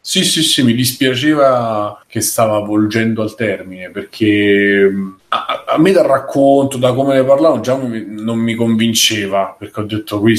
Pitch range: 100-115 Hz